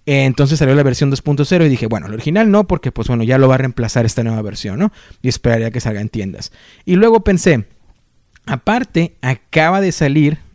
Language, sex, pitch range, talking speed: Spanish, male, 125-175 Hz, 210 wpm